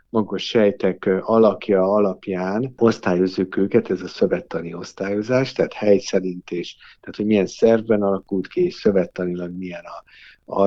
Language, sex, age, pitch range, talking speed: Hungarian, male, 50-69, 95-110 Hz, 135 wpm